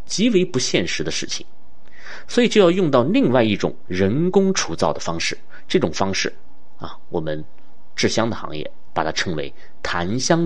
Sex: male